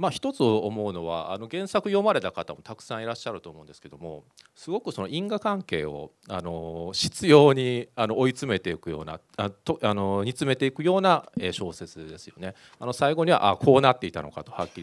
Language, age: Japanese, 40-59